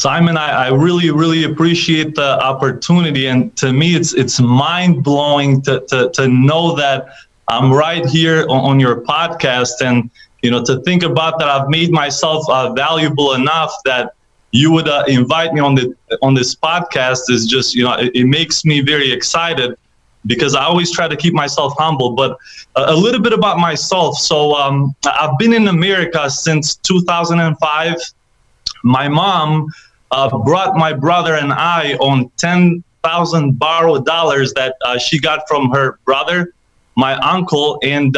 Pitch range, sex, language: 135-170 Hz, male, English